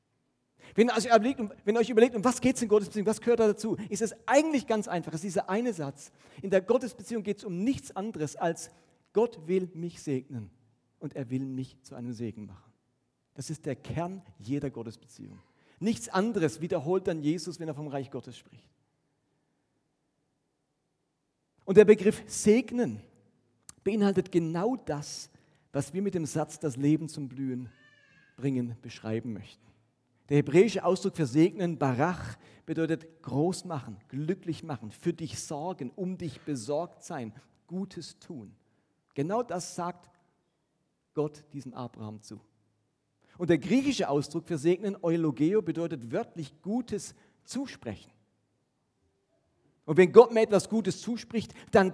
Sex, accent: male, German